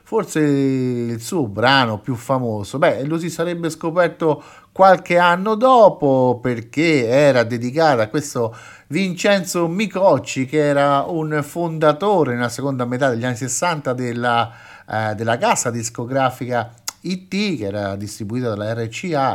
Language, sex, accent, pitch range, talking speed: Italian, male, native, 115-150 Hz, 130 wpm